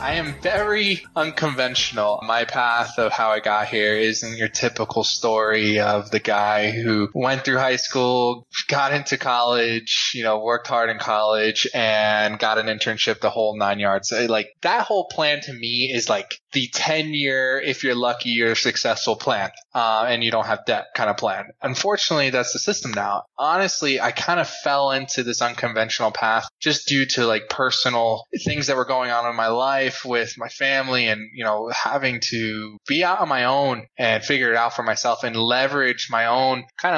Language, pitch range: English, 110-135 Hz